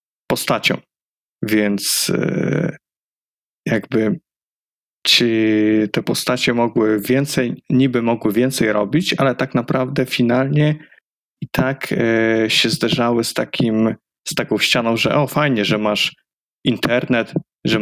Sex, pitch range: male, 110-130 Hz